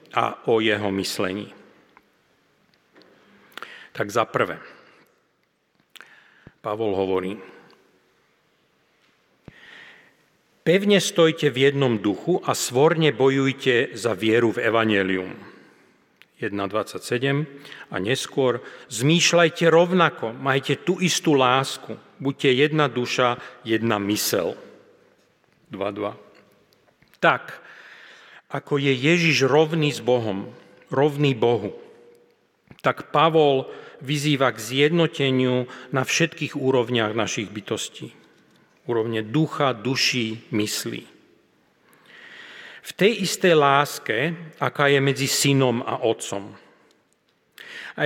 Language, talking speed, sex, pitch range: Slovak, 85 wpm, male, 115-155 Hz